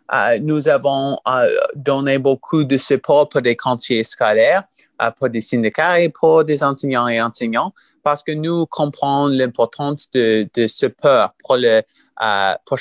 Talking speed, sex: 160 wpm, male